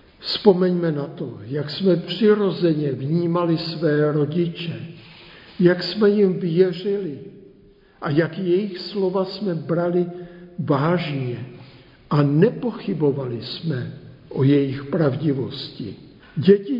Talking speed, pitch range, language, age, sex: 95 wpm, 155-190 Hz, Czech, 60-79, male